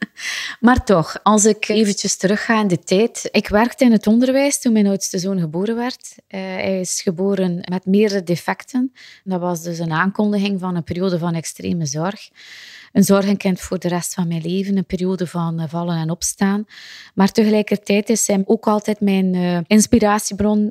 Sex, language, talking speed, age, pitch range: female, Dutch, 180 wpm, 20-39, 185-215 Hz